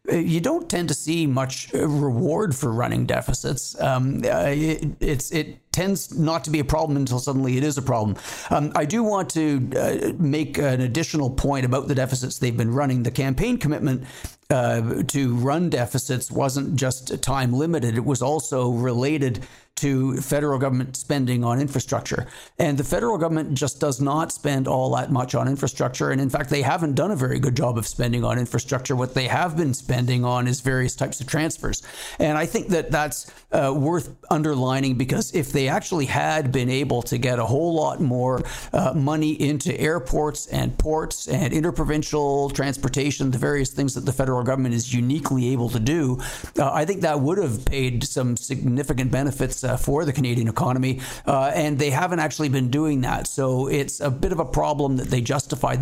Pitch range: 130-150 Hz